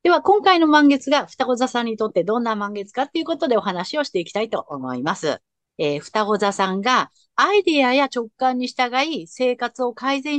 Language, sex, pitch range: Japanese, female, 185-305 Hz